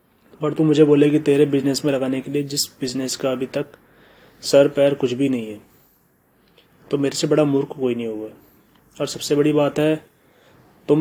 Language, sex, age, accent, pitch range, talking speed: Hindi, male, 20-39, native, 125-145 Hz, 195 wpm